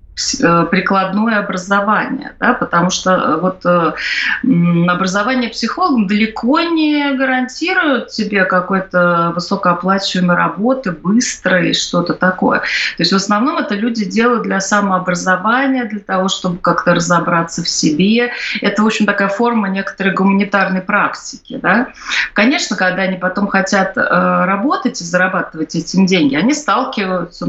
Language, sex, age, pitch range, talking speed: Russian, female, 30-49, 185-260 Hz, 120 wpm